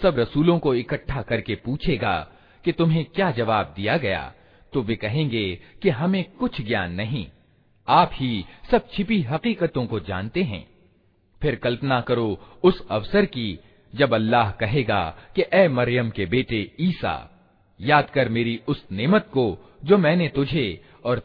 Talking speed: 145 wpm